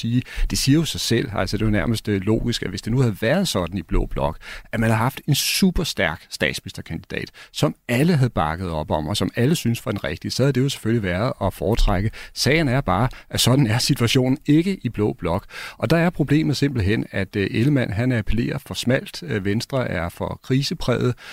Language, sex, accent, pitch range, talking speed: Danish, male, native, 100-130 Hz, 215 wpm